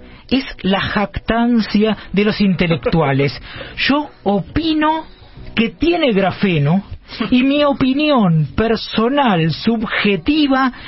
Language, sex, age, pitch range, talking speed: Spanish, male, 40-59, 180-250 Hz, 90 wpm